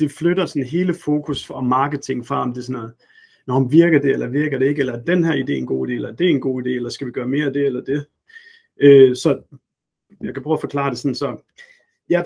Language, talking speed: Danish, 265 wpm